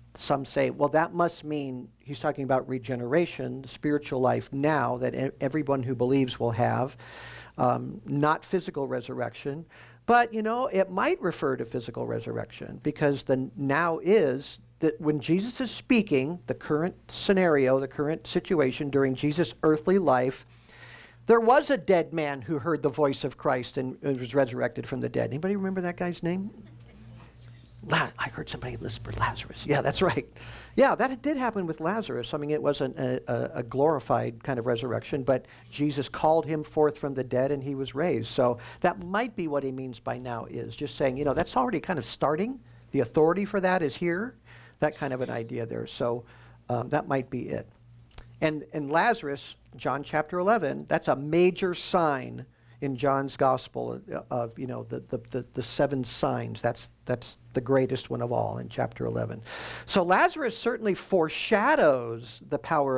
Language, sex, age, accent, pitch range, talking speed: English, male, 50-69, American, 125-160 Hz, 175 wpm